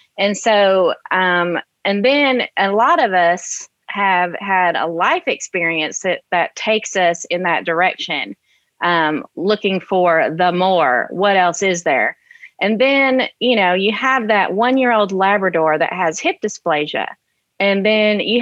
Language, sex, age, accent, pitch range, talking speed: English, female, 30-49, American, 175-225 Hz, 150 wpm